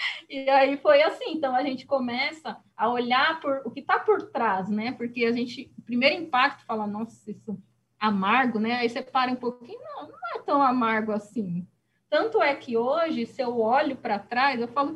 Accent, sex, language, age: Brazilian, female, Portuguese, 20-39